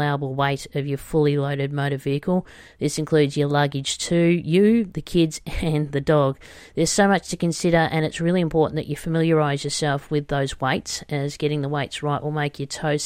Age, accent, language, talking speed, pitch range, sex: 40-59, Australian, English, 200 wpm, 140-155 Hz, female